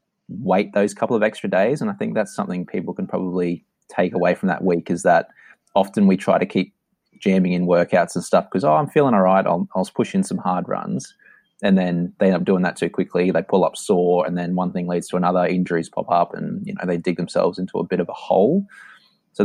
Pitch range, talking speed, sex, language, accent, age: 90-110 Hz, 245 wpm, male, English, Australian, 20-39